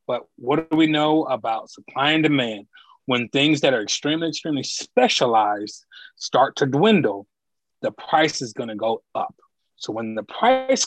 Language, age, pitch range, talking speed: English, 30-49, 120-155 Hz, 165 wpm